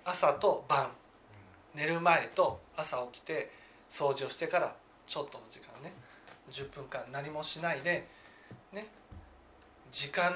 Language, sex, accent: Japanese, male, native